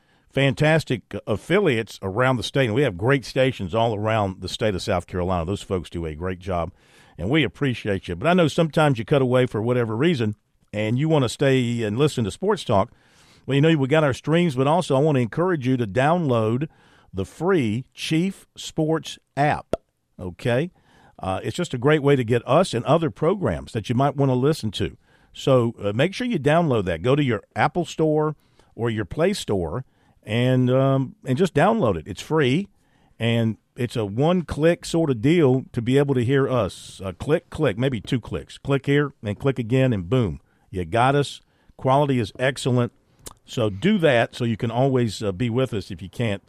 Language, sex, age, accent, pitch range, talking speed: English, male, 50-69, American, 110-150 Hz, 205 wpm